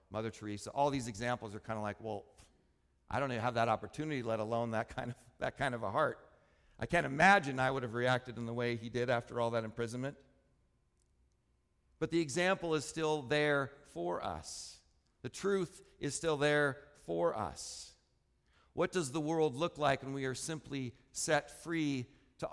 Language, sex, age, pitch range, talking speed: English, male, 50-69, 110-165 Hz, 180 wpm